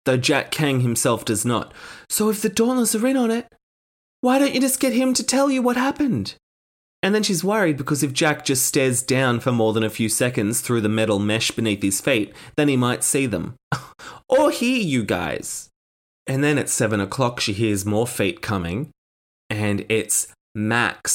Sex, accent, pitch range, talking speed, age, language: male, Australian, 105-150 Hz, 200 wpm, 20-39, English